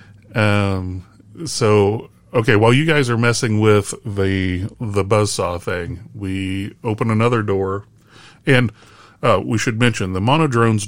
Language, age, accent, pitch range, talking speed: English, 30-49, American, 95-115 Hz, 130 wpm